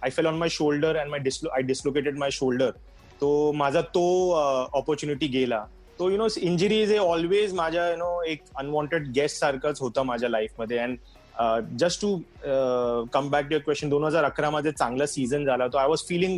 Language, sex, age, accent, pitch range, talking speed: Marathi, male, 30-49, native, 130-155 Hz, 200 wpm